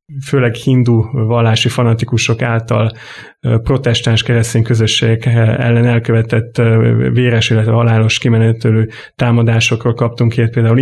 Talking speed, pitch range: 100 wpm, 115-125 Hz